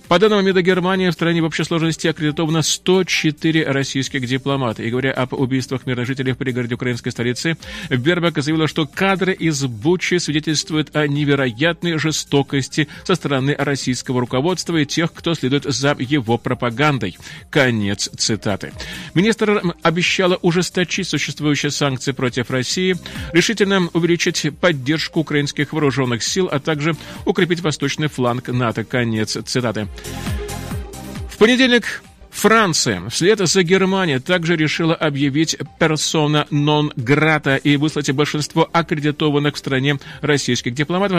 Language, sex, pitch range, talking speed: Russian, male, 135-170 Hz, 125 wpm